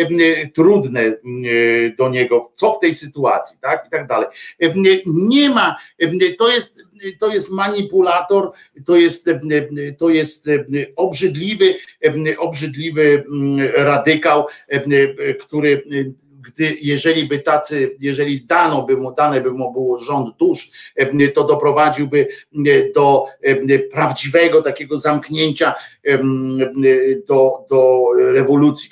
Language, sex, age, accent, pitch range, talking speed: Polish, male, 50-69, native, 135-180 Hz, 100 wpm